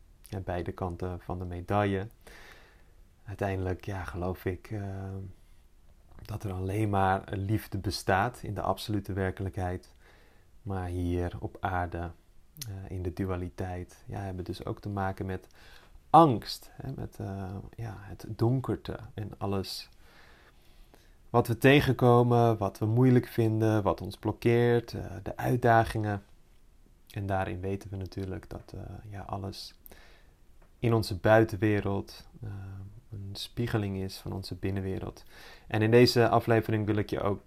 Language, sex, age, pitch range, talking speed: Dutch, male, 30-49, 95-110 Hz, 140 wpm